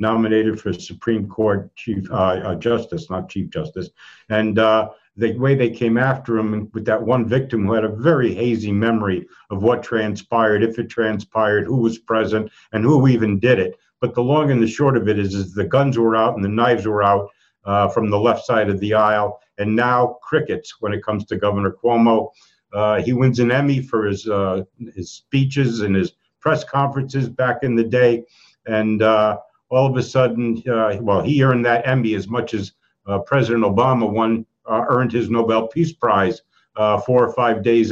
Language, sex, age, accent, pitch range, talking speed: English, male, 60-79, American, 105-125 Hz, 200 wpm